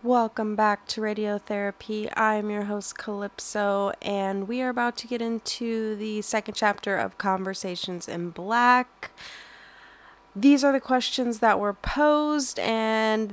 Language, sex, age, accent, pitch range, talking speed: English, female, 20-39, American, 180-225 Hz, 135 wpm